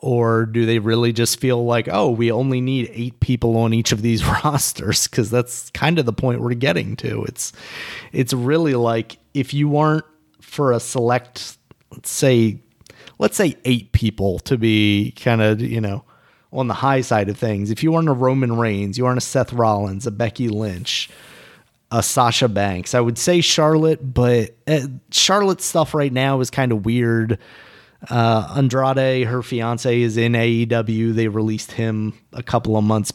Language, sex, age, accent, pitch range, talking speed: English, male, 30-49, American, 115-130 Hz, 180 wpm